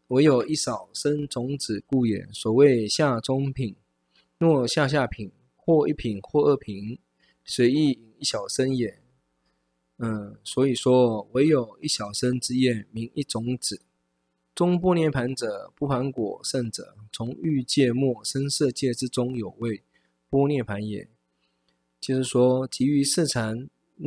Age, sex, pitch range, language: 20-39, male, 105-140 Hz, Chinese